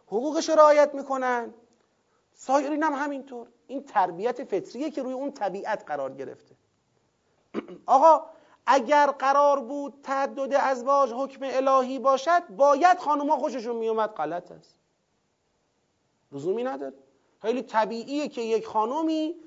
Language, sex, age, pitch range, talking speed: Persian, male, 40-59, 225-290 Hz, 115 wpm